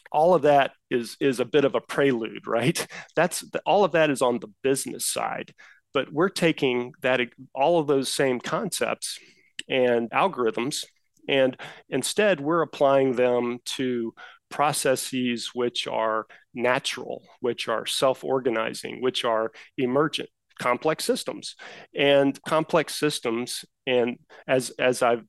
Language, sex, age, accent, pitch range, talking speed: English, male, 40-59, American, 120-140 Hz, 135 wpm